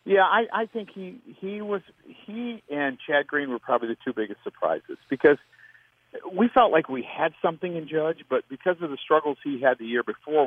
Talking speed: 205 wpm